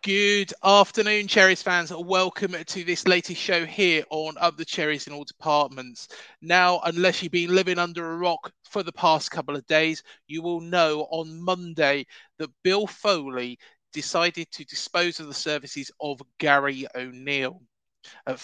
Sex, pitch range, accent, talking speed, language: male, 150-190 Hz, British, 160 wpm, English